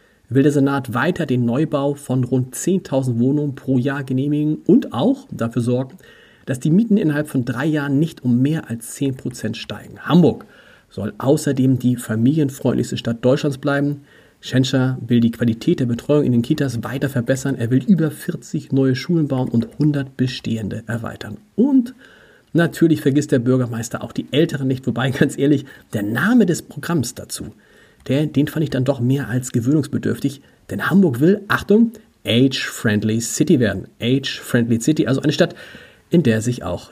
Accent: German